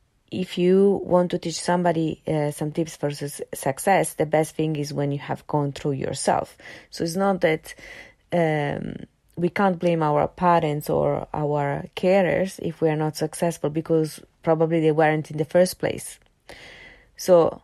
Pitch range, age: 155-185 Hz, 30-49